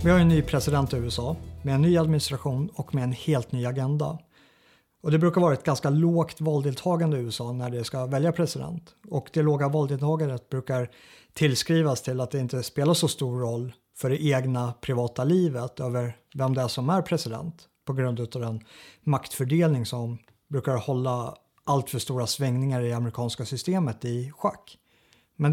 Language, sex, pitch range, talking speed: Swedish, male, 125-155 Hz, 180 wpm